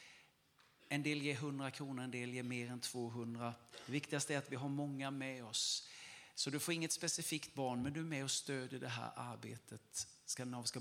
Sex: male